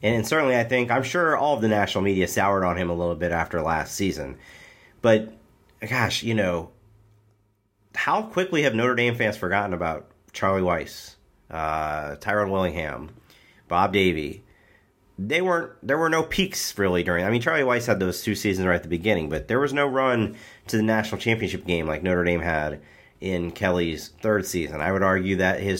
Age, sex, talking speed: 40-59, male, 190 wpm